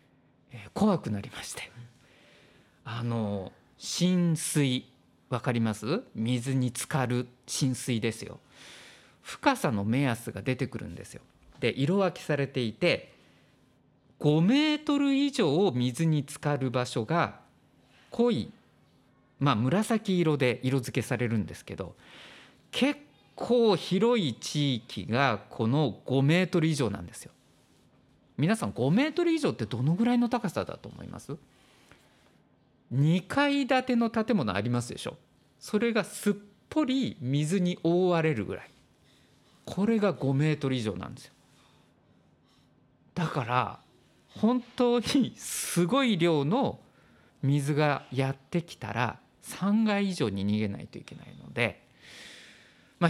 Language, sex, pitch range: Japanese, male, 120-195 Hz